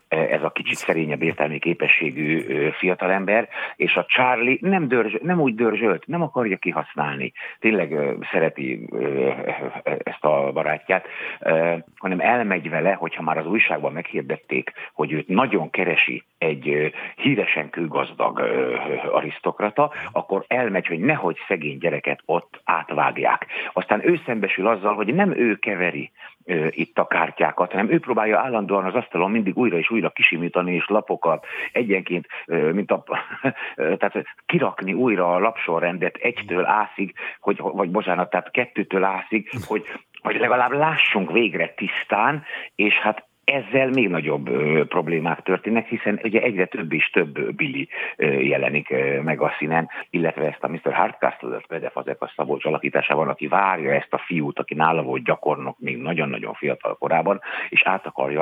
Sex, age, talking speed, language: male, 60-79, 145 wpm, Hungarian